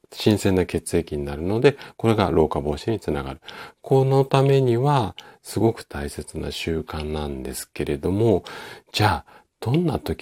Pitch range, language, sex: 75-95 Hz, Japanese, male